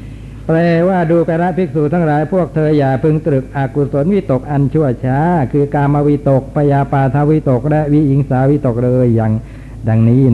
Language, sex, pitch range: Thai, male, 120-140 Hz